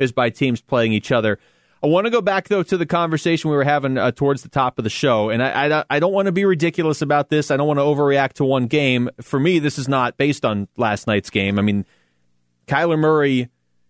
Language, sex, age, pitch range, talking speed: English, male, 30-49, 105-145 Hz, 250 wpm